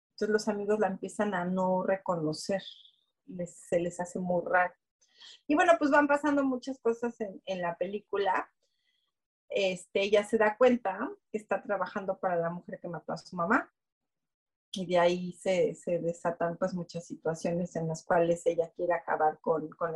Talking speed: 165 wpm